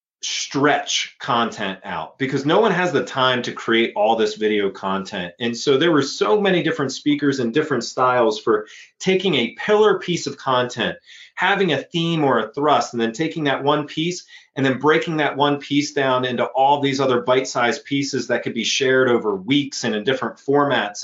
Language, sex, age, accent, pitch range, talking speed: English, male, 30-49, American, 125-165 Hz, 195 wpm